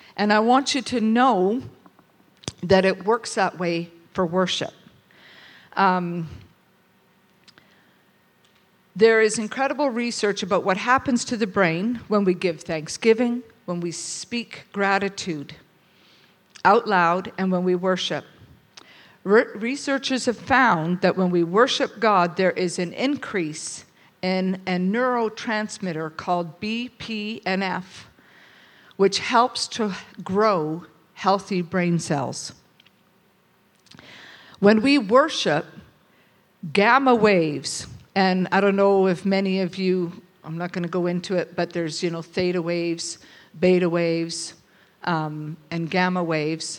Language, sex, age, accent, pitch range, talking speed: English, female, 50-69, American, 175-215 Hz, 120 wpm